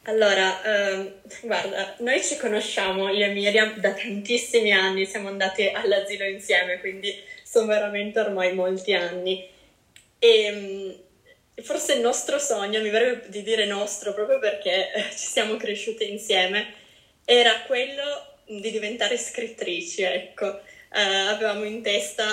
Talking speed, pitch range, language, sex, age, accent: 130 wpm, 195-230 Hz, Italian, female, 20-39, native